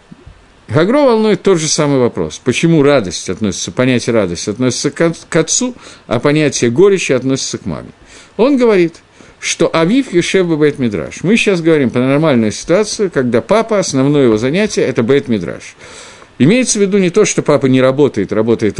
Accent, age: native, 50-69